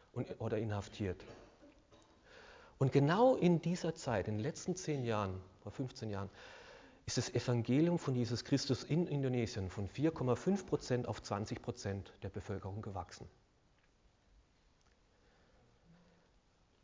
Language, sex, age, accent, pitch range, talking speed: German, male, 40-59, German, 115-155 Hz, 110 wpm